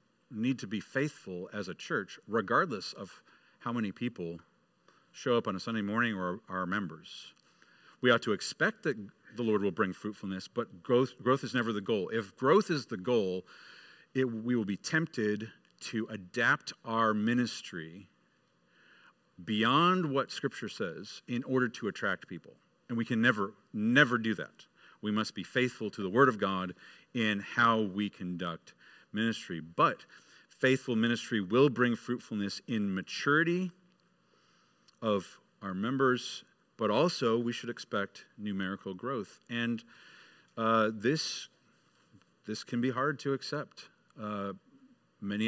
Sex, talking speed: male, 145 wpm